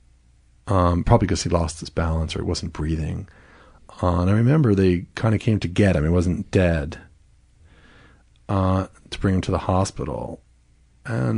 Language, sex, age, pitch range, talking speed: English, male, 40-59, 85-105 Hz, 175 wpm